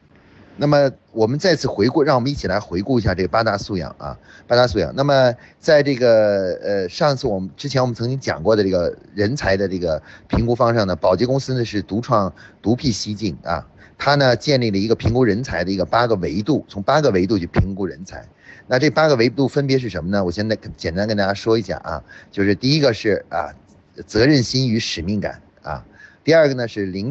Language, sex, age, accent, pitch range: Chinese, male, 30-49, native, 100-135 Hz